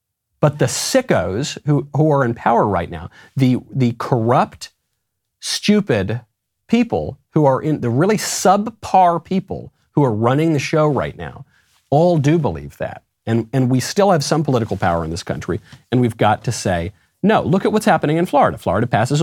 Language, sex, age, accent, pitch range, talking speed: English, male, 40-59, American, 105-165 Hz, 180 wpm